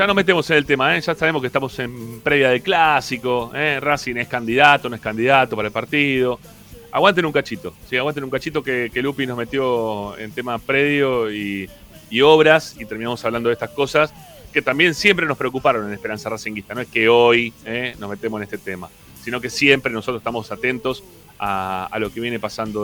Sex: male